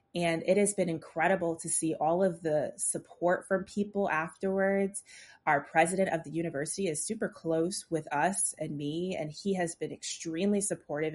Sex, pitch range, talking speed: female, 155-180 Hz, 170 wpm